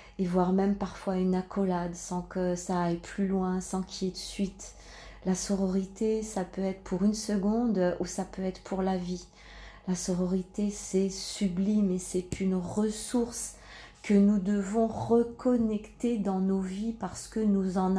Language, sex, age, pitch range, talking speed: French, female, 40-59, 185-210 Hz, 175 wpm